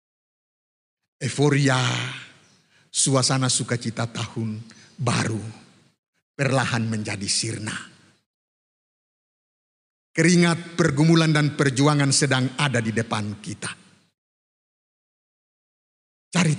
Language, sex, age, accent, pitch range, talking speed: Indonesian, male, 50-69, native, 120-165 Hz, 65 wpm